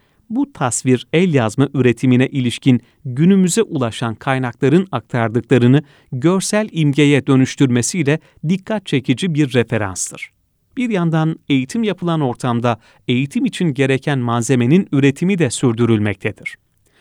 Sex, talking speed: male, 100 wpm